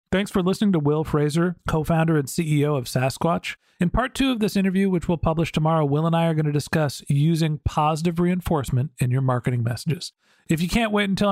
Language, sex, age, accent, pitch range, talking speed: English, male, 40-59, American, 145-180 Hz, 210 wpm